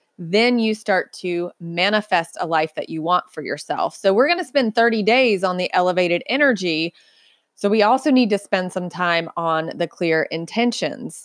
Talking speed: 185 wpm